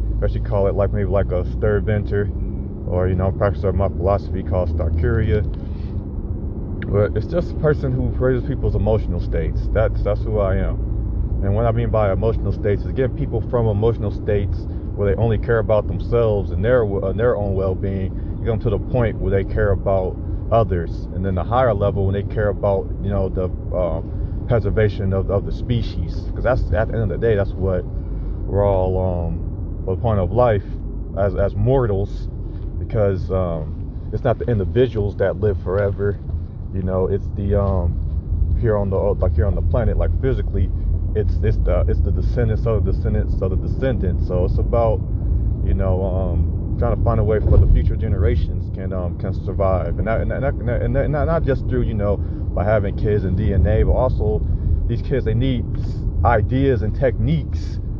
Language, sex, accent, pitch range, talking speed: English, male, American, 90-105 Hz, 190 wpm